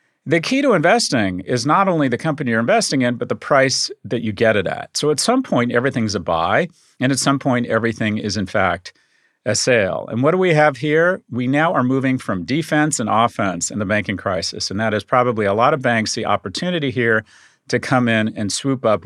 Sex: male